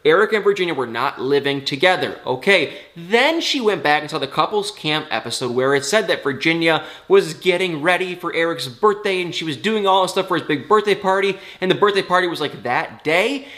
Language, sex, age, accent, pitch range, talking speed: English, male, 20-39, American, 140-195 Hz, 215 wpm